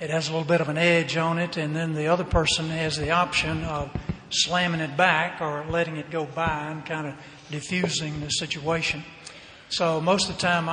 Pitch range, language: 150-170 Hz, English